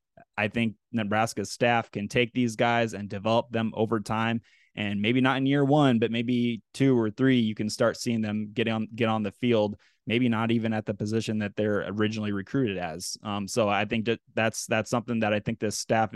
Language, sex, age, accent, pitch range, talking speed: English, male, 20-39, American, 110-125 Hz, 220 wpm